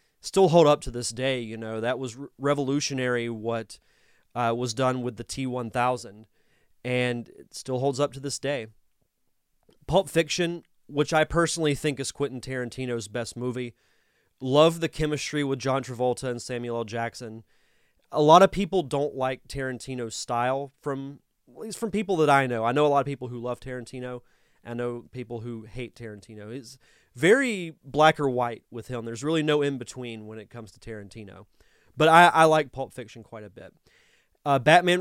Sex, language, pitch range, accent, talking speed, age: male, English, 120-155 Hz, American, 180 wpm, 30-49